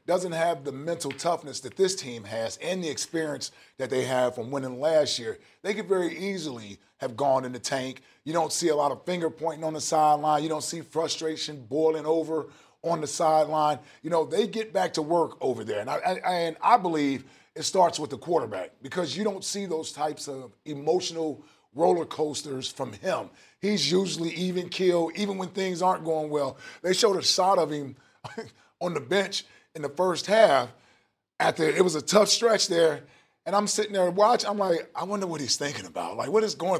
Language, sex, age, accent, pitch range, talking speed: English, male, 30-49, American, 150-190 Hz, 205 wpm